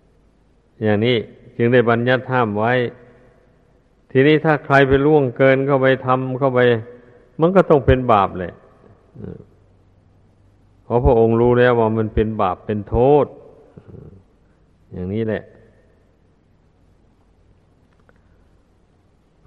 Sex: male